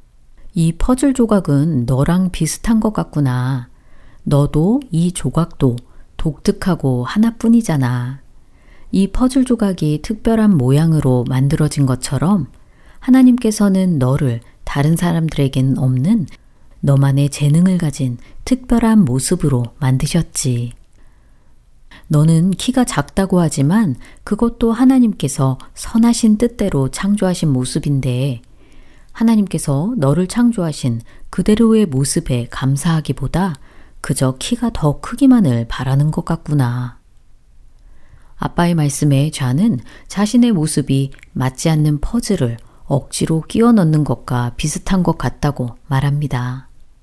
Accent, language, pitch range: native, Korean, 135-200 Hz